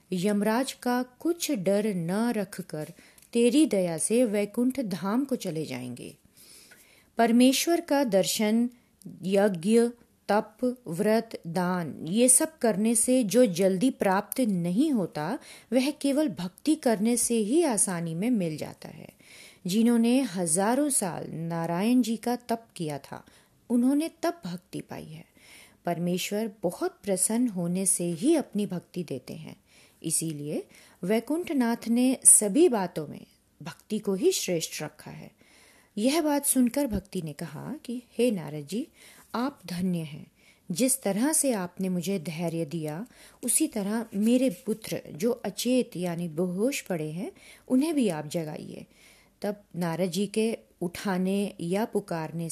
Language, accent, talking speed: Hindi, native, 135 wpm